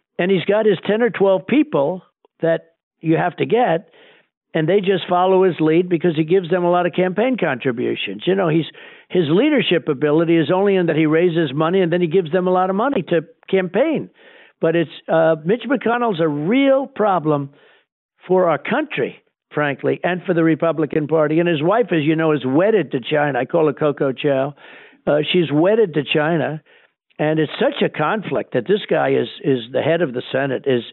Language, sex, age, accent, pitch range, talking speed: English, male, 60-79, American, 160-195 Hz, 205 wpm